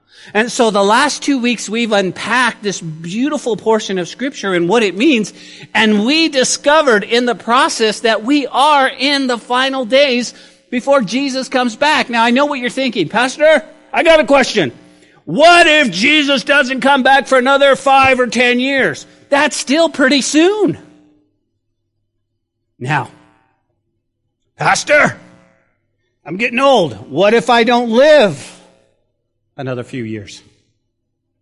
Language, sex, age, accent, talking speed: English, male, 50-69, American, 140 wpm